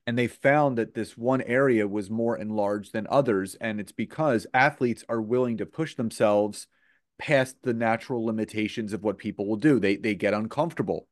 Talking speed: 185 wpm